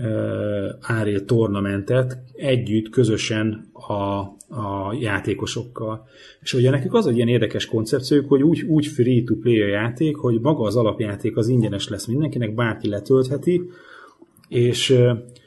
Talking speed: 130 wpm